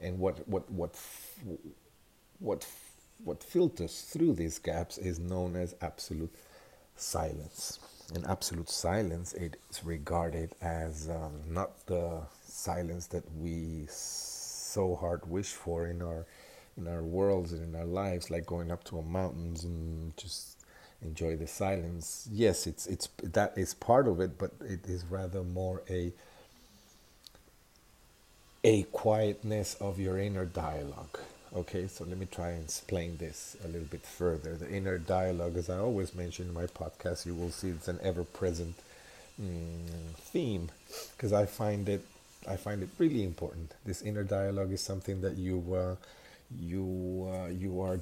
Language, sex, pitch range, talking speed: English, male, 85-95 Hz, 150 wpm